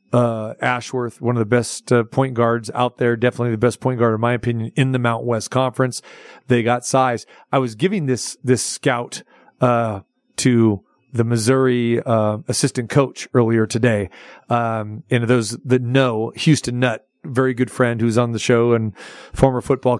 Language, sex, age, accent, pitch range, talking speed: English, male, 40-59, American, 120-135 Hz, 175 wpm